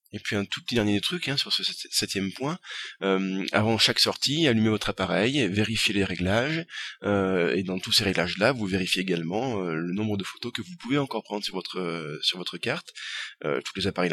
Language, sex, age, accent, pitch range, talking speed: French, male, 20-39, French, 95-130 Hz, 215 wpm